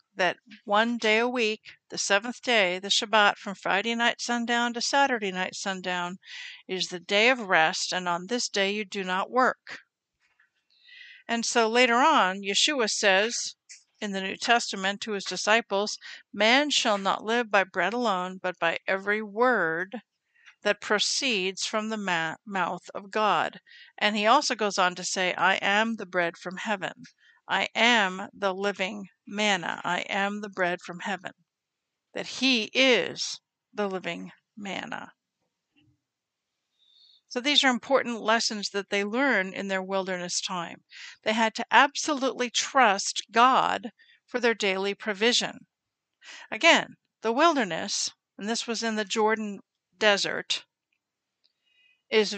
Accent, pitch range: American, 195-240 Hz